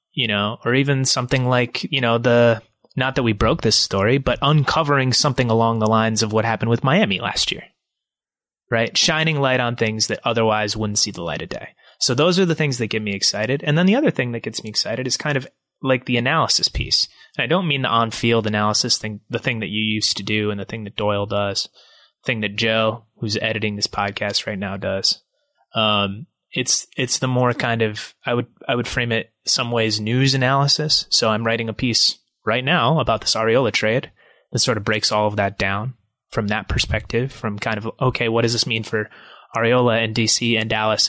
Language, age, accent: English, 20-39, American